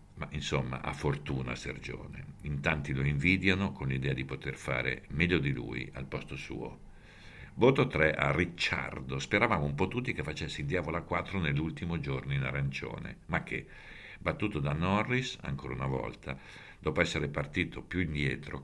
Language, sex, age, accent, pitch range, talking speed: Italian, male, 60-79, native, 70-95 Hz, 165 wpm